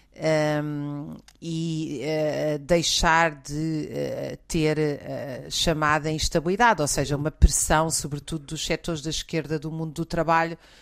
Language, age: Portuguese, 40-59